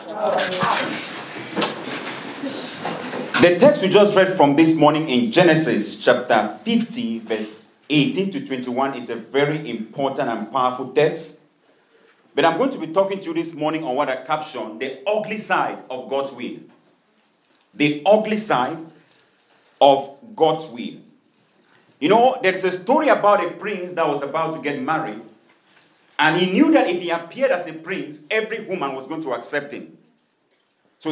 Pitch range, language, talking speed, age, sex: 145-195 Hz, English, 155 wpm, 40-59, male